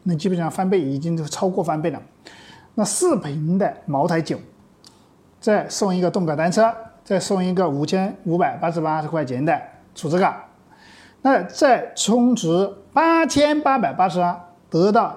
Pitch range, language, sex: 175-250 Hz, Chinese, male